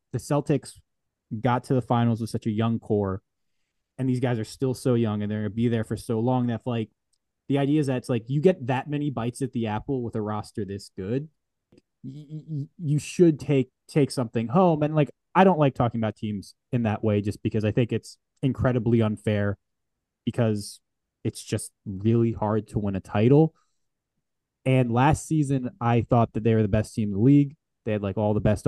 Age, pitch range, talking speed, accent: 20-39, 105-130 Hz, 210 wpm, American